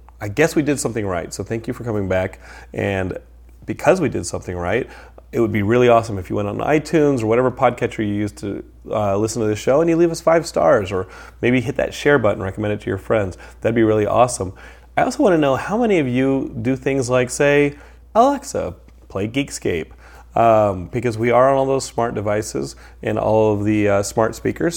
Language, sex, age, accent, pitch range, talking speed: English, male, 30-49, American, 95-120 Hz, 225 wpm